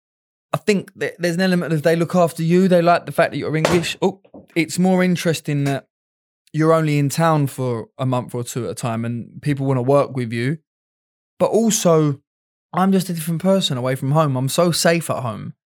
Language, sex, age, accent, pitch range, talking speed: English, male, 20-39, British, 135-180 Hz, 215 wpm